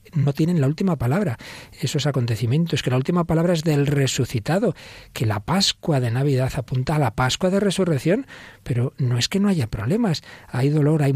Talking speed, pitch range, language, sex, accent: 190 wpm, 135-185 Hz, Spanish, male, Spanish